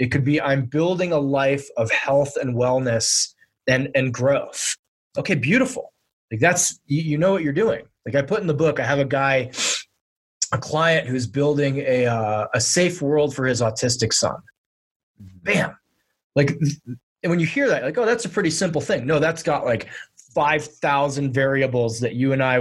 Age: 20-39